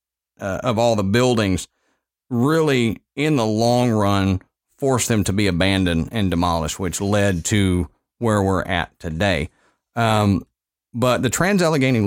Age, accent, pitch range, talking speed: 40-59, American, 95-130 Hz, 140 wpm